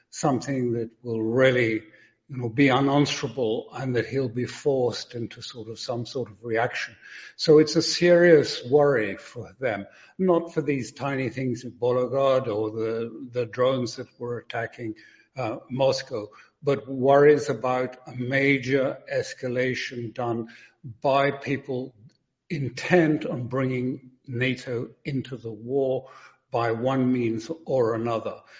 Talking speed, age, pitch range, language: 135 wpm, 60-79, 120-140 Hz, English